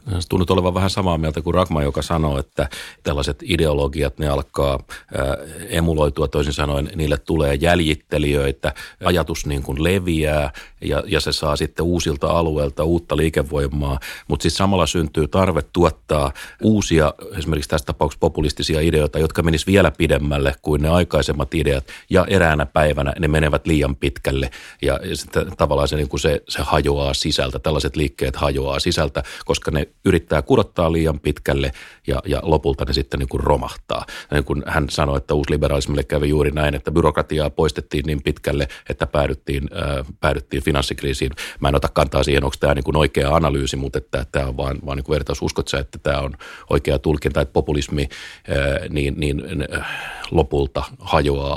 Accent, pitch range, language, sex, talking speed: native, 70-80 Hz, Finnish, male, 160 wpm